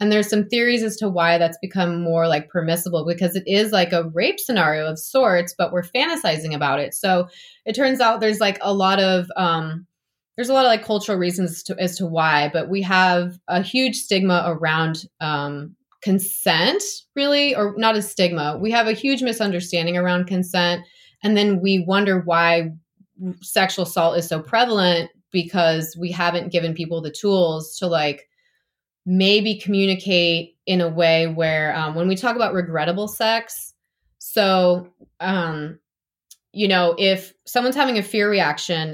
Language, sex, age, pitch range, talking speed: English, female, 20-39, 170-205 Hz, 170 wpm